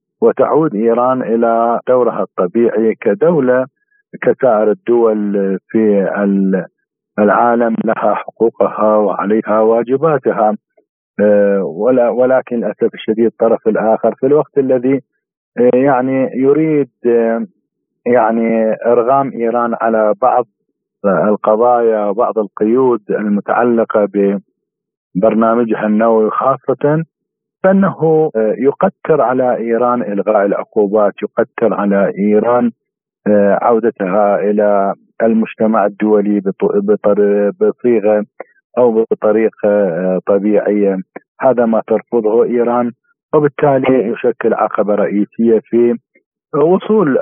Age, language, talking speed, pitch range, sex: 50-69, Arabic, 80 wpm, 105-125 Hz, male